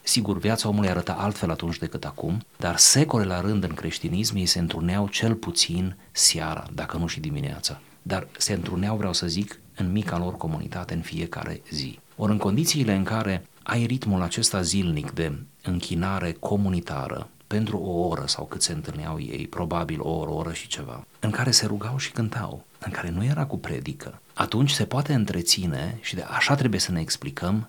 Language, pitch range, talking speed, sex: Romanian, 90-115 Hz, 190 wpm, male